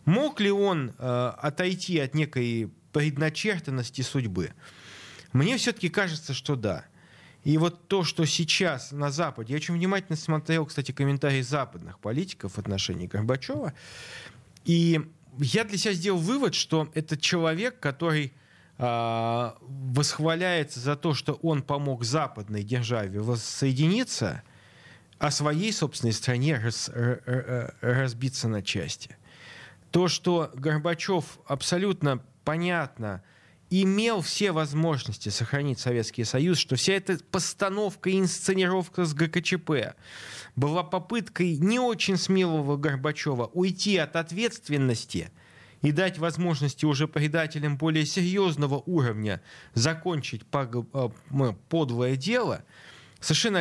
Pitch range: 125-175 Hz